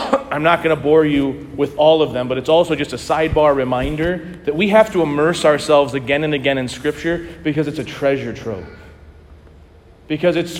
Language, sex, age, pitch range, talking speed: English, male, 30-49, 120-160 Hz, 200 wpm